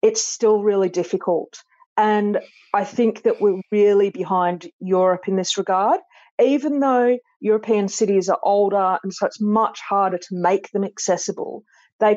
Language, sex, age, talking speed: English, female, 40-59, 155 wpm